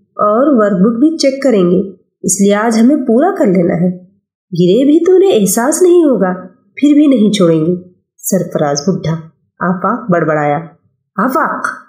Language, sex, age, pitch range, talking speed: Urdu, female, 30-49, 185-270 Hz, 160 wpm